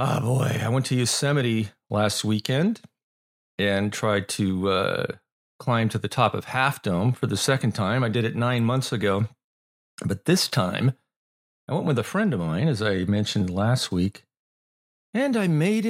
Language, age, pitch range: English, 40-59, 95-125 Hz